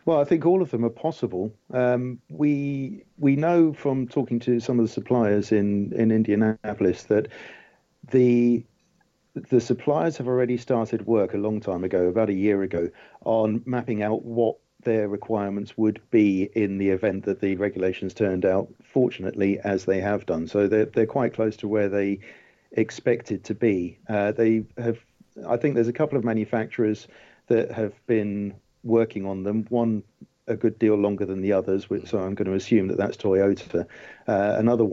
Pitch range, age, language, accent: 100-115 Hz, 50-69, English, British